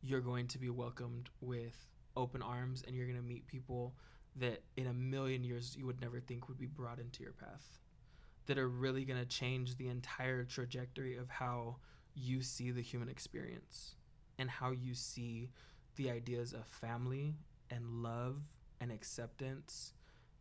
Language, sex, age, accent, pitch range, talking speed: English, male, 20-39, American, 120-130 Hz, 160 wpm